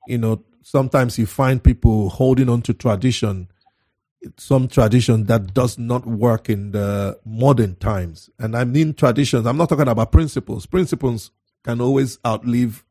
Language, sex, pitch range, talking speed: English, male, 110-130 Hz, 155 wpm